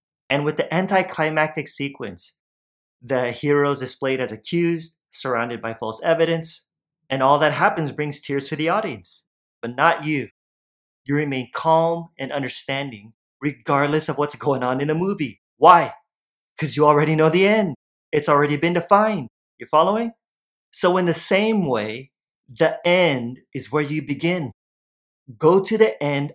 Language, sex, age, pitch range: English, male, 30-49, 130-170 Hz